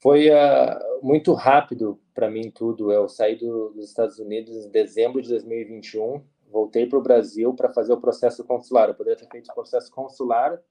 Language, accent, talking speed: Portuguese, Brazilian, 180 wpm